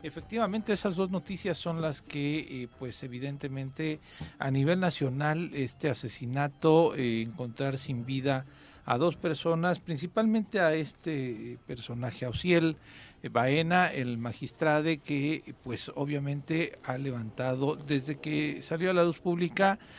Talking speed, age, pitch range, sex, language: 125 wpm, 50-69, 125-155 Hz, male, Spanish